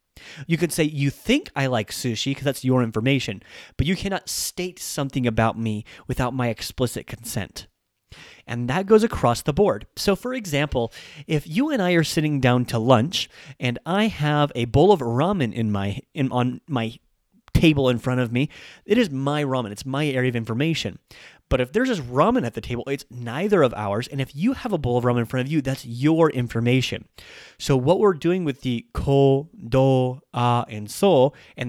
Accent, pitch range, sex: American, 115-150 Hz, male